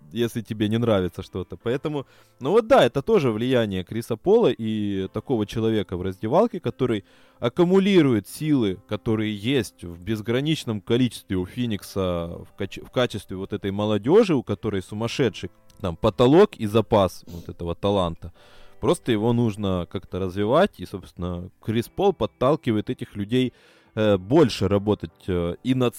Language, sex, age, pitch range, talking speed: Russian, male, 20-39, 100-125 Hz, 145 wpm